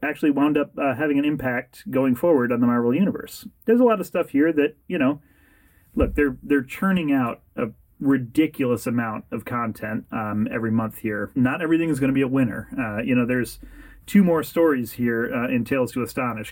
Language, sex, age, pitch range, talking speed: English, male, 30-49, 110-140 Hz, 205 wpm